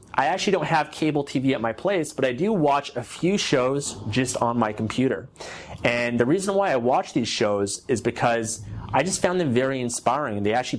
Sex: male